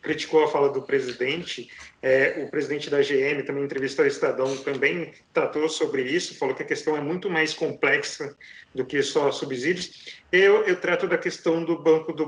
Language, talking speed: Portuguese, 185 wpm